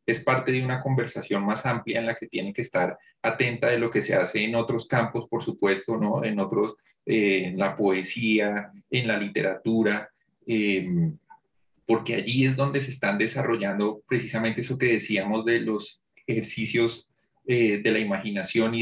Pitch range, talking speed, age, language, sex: 105-130 Hz, 170 wpm, 30-49, Spanish, male